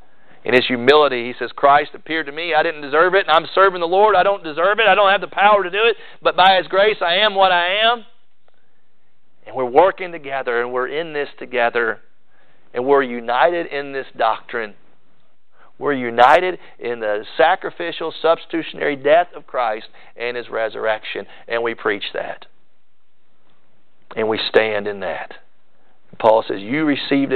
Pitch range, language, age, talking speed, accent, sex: 140-215 Hz, English, 40-59, 170 wpm, American, male